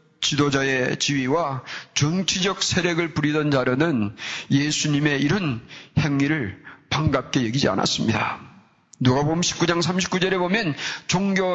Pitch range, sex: 135-195 Hz, male